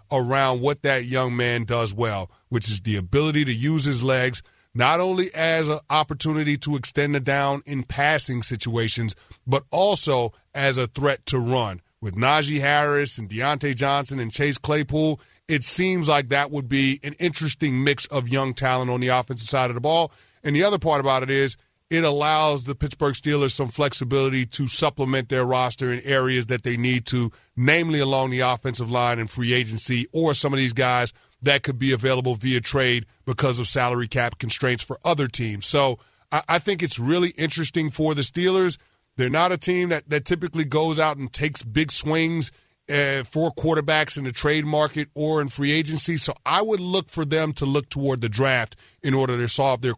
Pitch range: 125-150 Hz